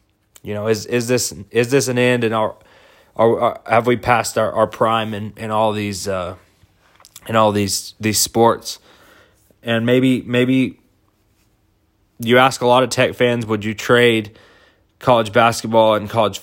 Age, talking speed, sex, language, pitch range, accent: 20-39, 165 wpm, male, English, 105-120 Hz, American